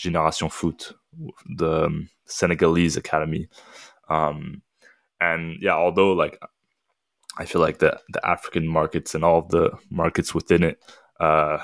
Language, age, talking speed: English, 20-39, 125 wpm